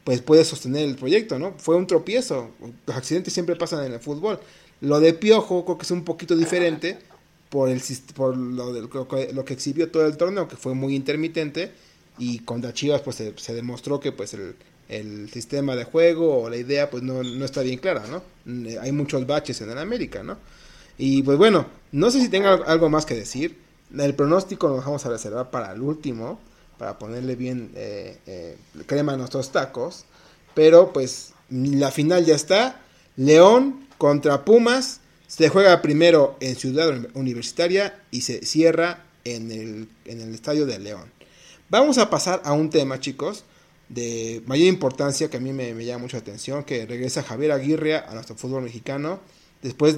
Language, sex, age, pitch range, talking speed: Spanish, male, 30-49, 125-165 Hz, 180 wpm